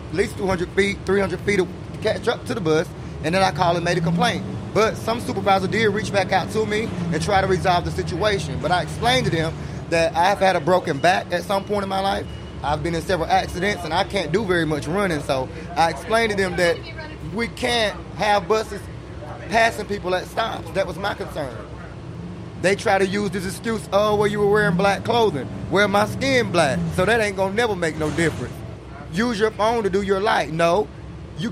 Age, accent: 30-49, American